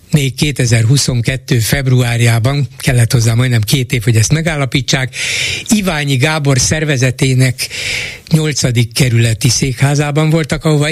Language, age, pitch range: Hungarian, 60-79, 120-155 Hz